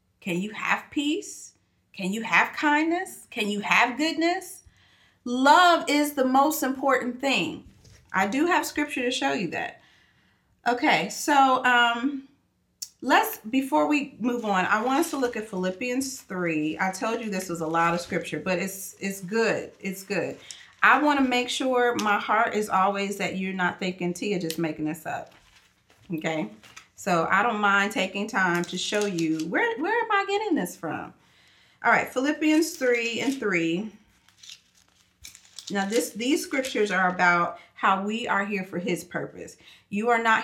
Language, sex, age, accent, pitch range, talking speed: English, female, 40-59, American, 185-245 Hz, 165 wpm